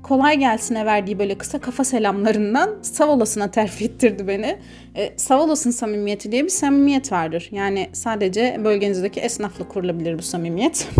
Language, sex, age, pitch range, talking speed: Turkish, female, 30-49, 205-265 Hz, 130 wpm